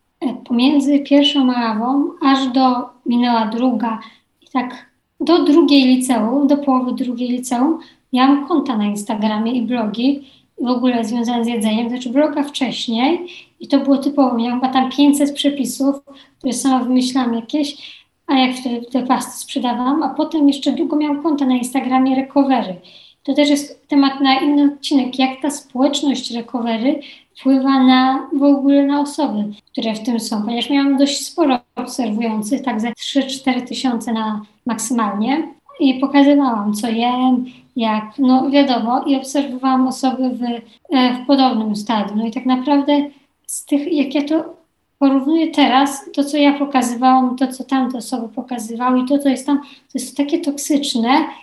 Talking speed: 155 wpm